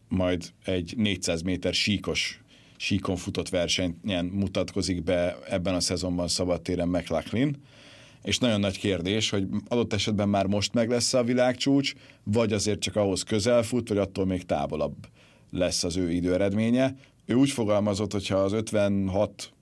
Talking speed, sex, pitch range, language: 155 wpm, male, 90-110 Hz, Hungarian